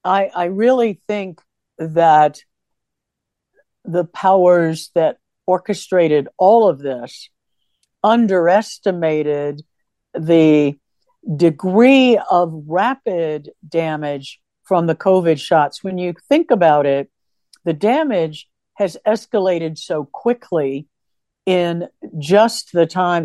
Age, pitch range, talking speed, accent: 60-79, 160-215 Hz, 95 wpm, American